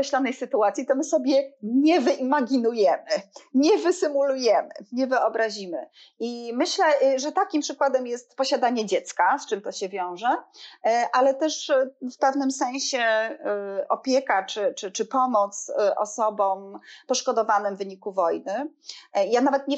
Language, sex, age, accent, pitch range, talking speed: Polish, female, 30-49, native, 220-315 Hz, 125 wpm